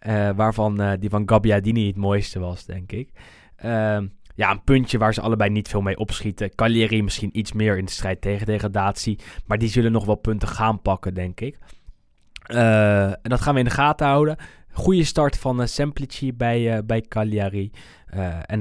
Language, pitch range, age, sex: Dutch, 100-120 Hz, 20-39, male